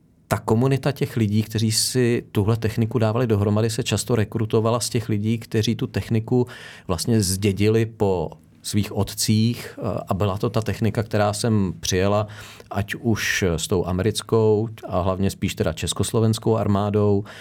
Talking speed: 150 wpm